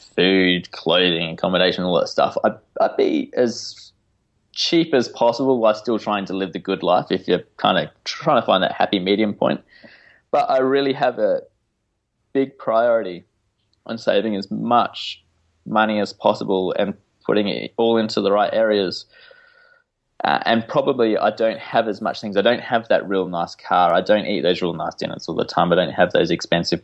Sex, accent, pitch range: male, Australian, 95-120 Hz